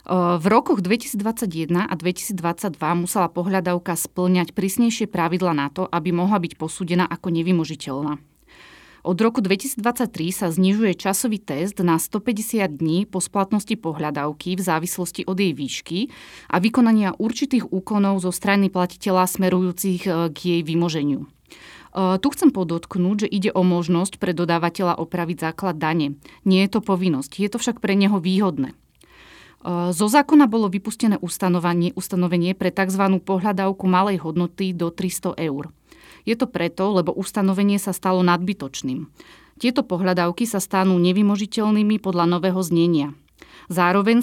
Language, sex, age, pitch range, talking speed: Slovak, female, 30-49, 175-205 Hz, 135 wpm